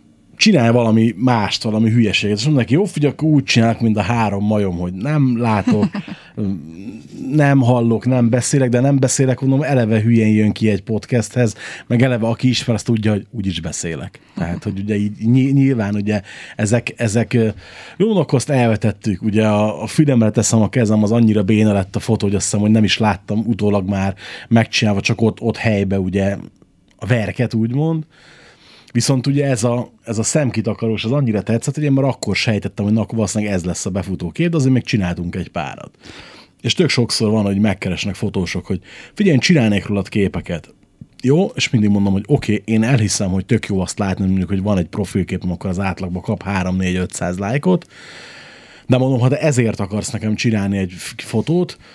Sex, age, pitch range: male, 30-49, 100-125 Hz